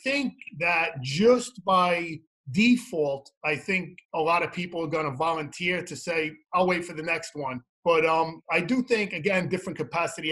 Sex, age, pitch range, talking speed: male, 30-49, 155-185 Hz, 185 wpm